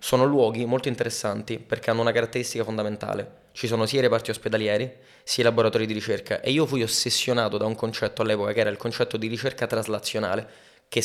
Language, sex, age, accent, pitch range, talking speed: Italian, male, 20-39, native, 110-130 Hz, 195 wpm